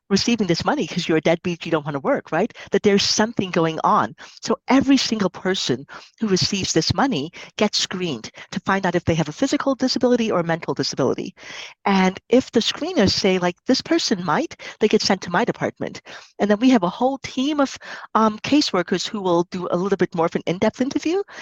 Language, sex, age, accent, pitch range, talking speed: English, female, 40-59, American, 175-225 Hz, 220 wpm